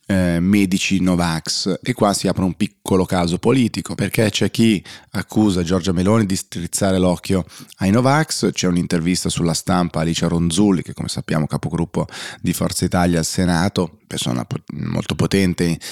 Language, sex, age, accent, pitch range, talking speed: Italian, male, 30-49, native, 90-100 Hz, 150 wpm